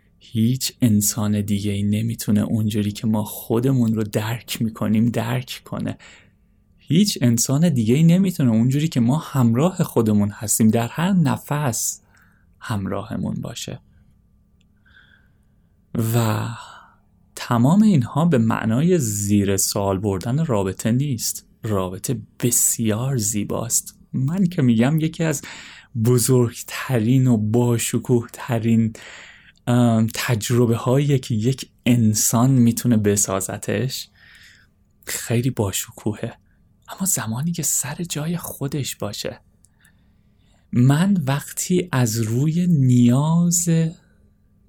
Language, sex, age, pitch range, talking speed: Persian, male, 30-49, 105-135 Hz, 95 wpm